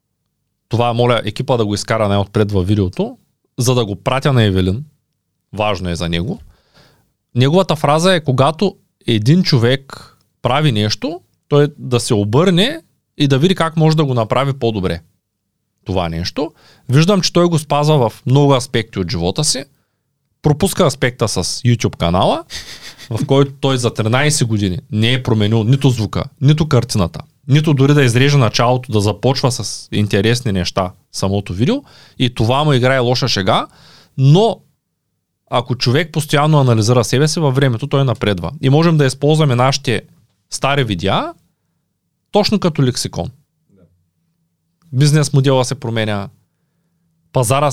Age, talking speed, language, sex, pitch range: 30-49, 145 wpm, Bulgarian, male, 115-150 Hz